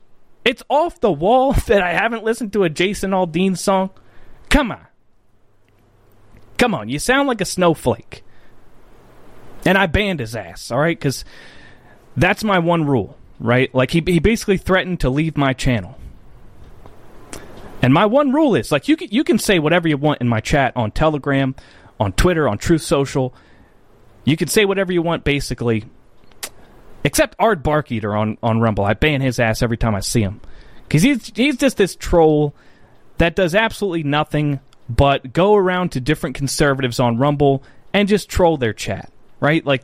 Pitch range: 120-185 Hz